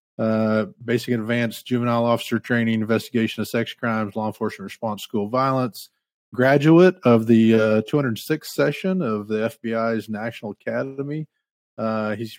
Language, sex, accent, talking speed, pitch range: English, male, American, 140 wpm, 110-125 Hz